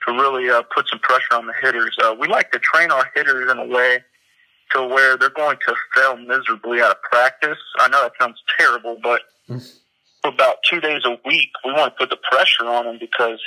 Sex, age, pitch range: male, 30-49, 120-135 Hz